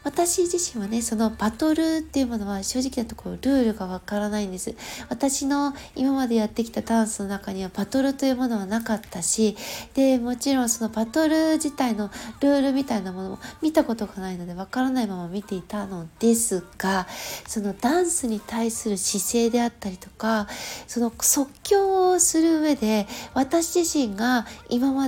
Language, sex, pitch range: Japanese, female, 215-305 Hz